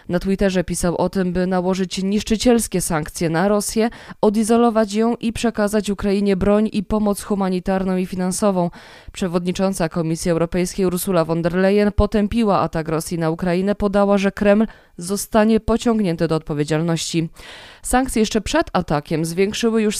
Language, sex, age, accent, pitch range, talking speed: Polish, female, 20-39, native, 180-215 Hz, 140 wpm